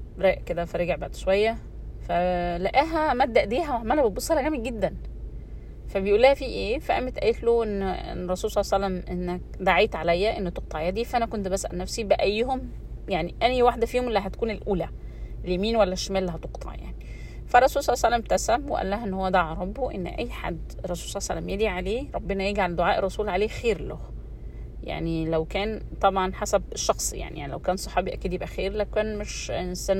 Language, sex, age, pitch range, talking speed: Arabic, female, 30-49, 185-250 Hz, 190 wpm